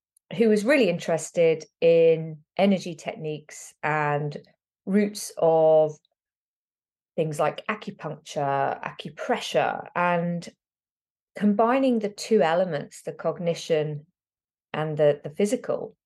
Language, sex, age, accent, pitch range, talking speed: English, female, 30-49, British, 155-195 Hz, 95 wpm